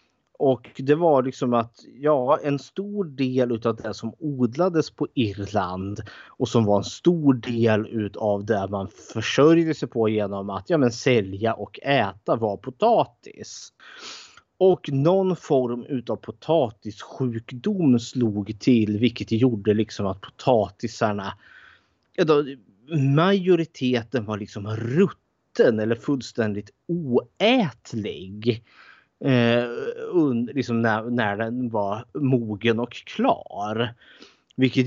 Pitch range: 110-135 Hz